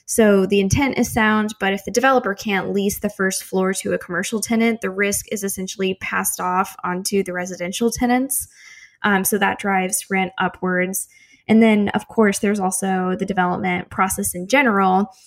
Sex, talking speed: female, 175 wpm